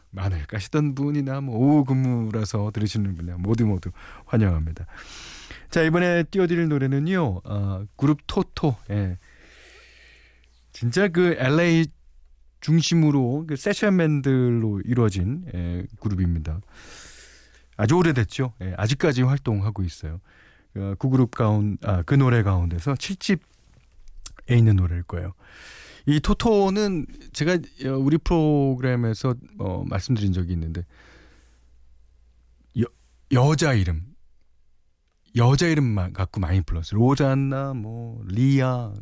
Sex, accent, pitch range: male, native, 90-140 Hz